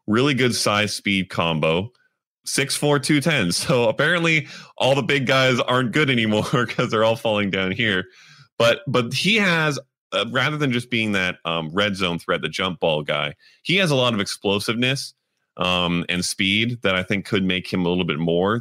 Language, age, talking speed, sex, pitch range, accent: English, 30-49, 195 wpm, male, 85-120 Hz, American